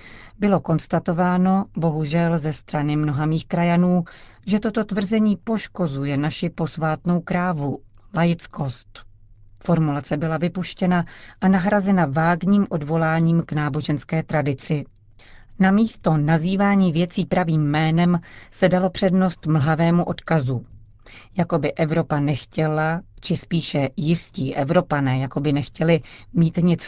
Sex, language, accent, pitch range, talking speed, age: female, Czech, native, 140-175 Hz, 110 wpm, 40-59